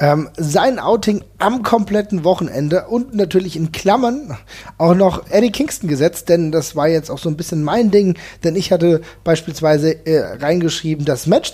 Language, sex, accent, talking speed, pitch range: German, male, German, 170 wpm, 155-185 Hz